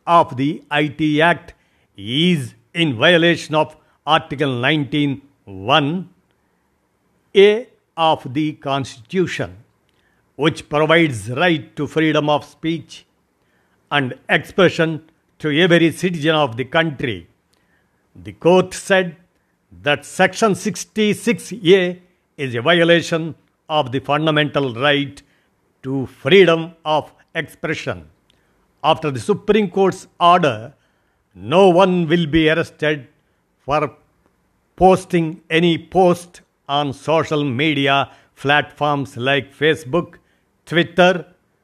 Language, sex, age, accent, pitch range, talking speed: Telugu, male, 60-79, native, 140-175 Hz, 100 wpm